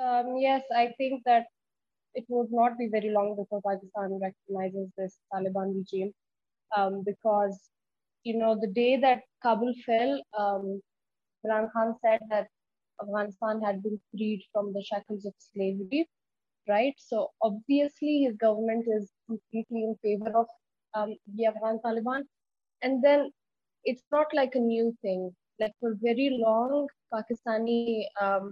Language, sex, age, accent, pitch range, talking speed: English, female, 20-39, Indian, 205-240 Hz, 145 wpm